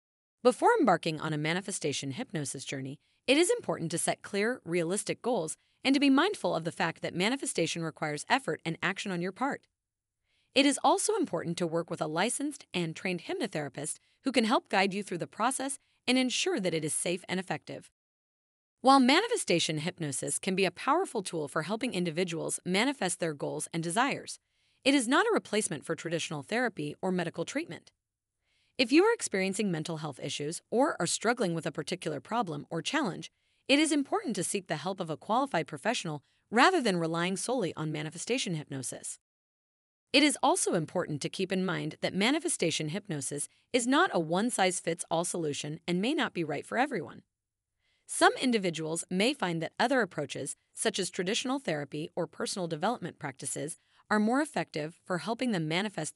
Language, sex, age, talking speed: English, female, 30-49, 175 wpm